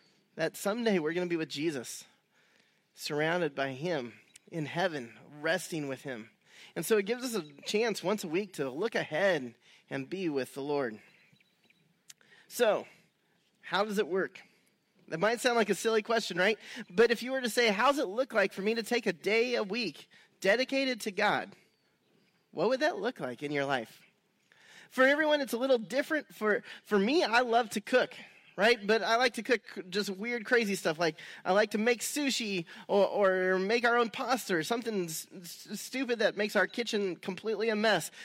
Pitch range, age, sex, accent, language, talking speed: 180-235 Hz, 30-49, male, American, English, 190 wpm